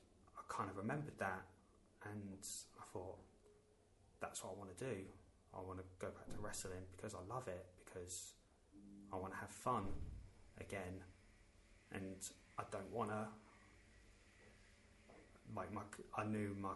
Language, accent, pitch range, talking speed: English, British, 95-110 Hz, 145 wpm